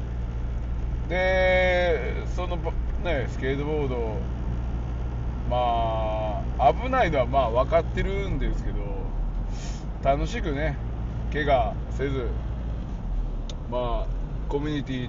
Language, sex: Japanese, male